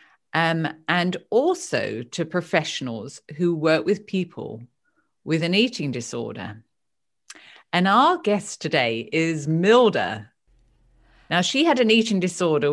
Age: 50-69